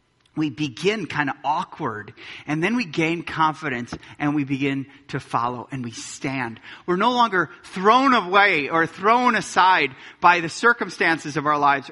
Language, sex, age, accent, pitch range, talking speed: English, male, 30-49, American, 130-180 Hz, 160 wpm